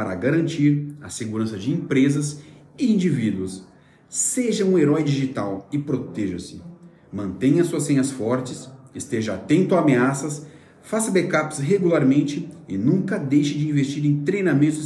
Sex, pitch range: male, 130-165 Hz